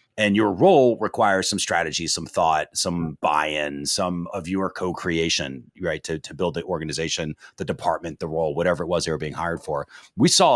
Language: English